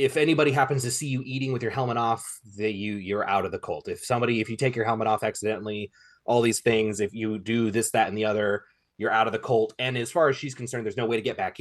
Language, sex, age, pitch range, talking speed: English, male, 20-39, 105-135 Hz, 285 wpm